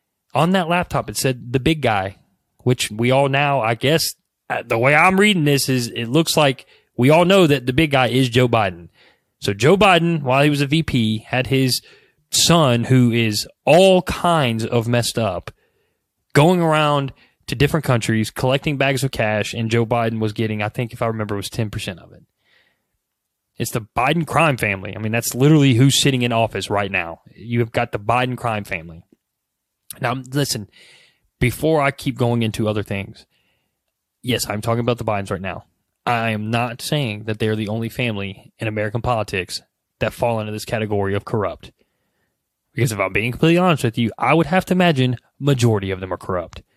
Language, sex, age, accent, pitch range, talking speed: English, male, 20-39, American, 110-140 Hz, 195 wpm